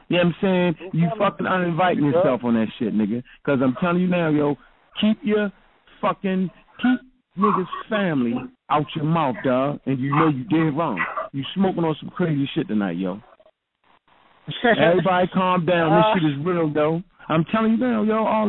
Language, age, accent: English, 50-69, American